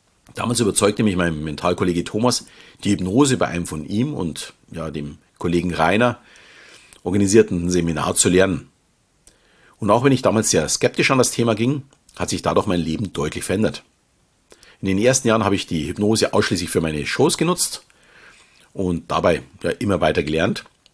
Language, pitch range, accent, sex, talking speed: German, 90-110 Hz, German, male, 165 wpm